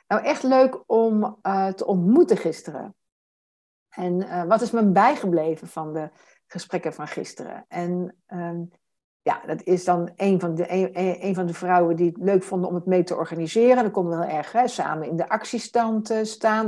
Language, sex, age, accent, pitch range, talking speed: Dutch, female, 60-79, Dutch, 180-235 Hz, 190 wpm